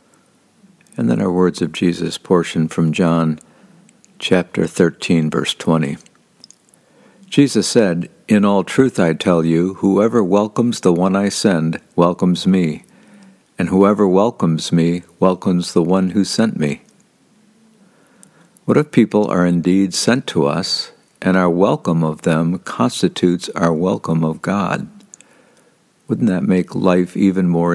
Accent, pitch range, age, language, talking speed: American, 85-105 Hz, 60-79, English, 135 wpm